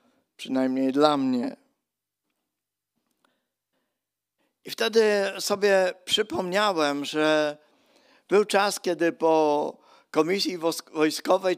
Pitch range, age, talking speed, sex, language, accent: 150-200 Hz, 50-69, 75 wpm, male, Polish, native